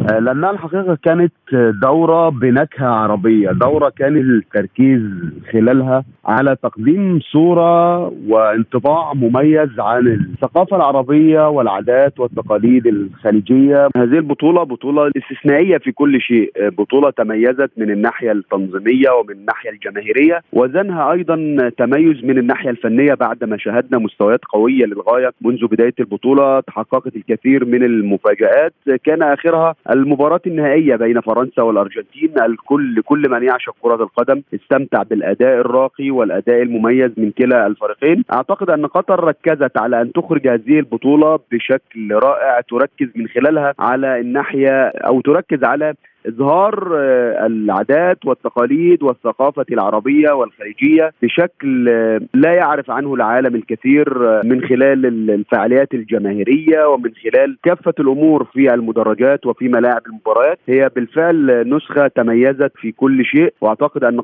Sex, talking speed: male, 120 wpm